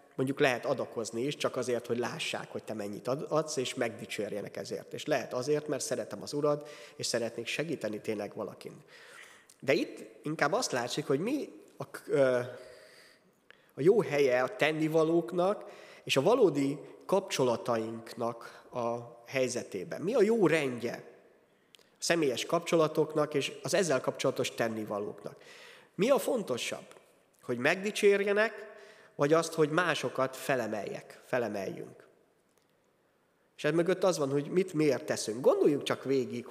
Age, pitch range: 30-49, 125-175 Hz